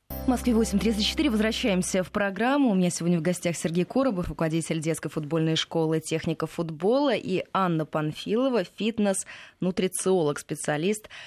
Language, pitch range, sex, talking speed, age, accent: Russian, 160-210 Hz, female, 120 wpm, 20-39, native